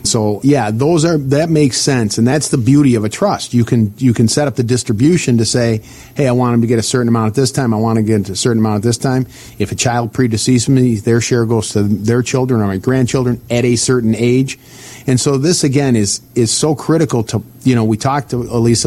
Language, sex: English, male